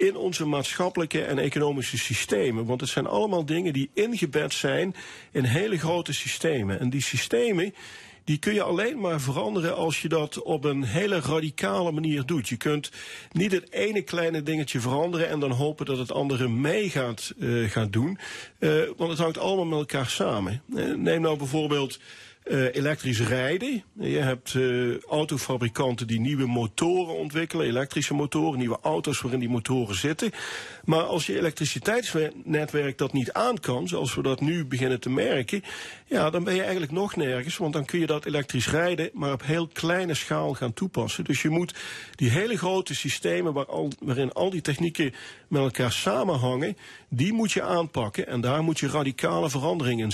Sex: male